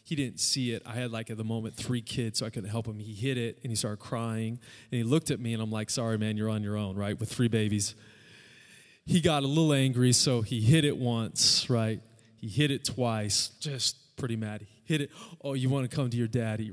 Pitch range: 115-140 Hz